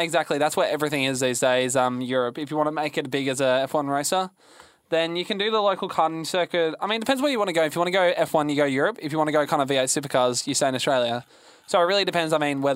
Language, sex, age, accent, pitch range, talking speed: English, male, 20-39, Australian, 140-185 Hz, 310 wpm